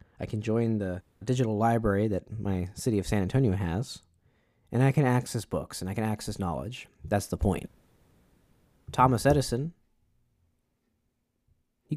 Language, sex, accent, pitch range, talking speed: English, male, American, 95-120 Hz, 145 wpm